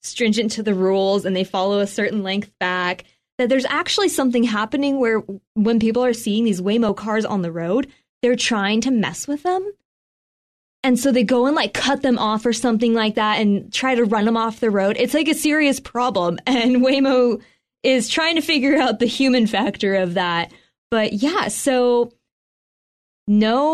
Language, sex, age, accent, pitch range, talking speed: English, female, 20-39, American, 200-255 Hz, 190 wpm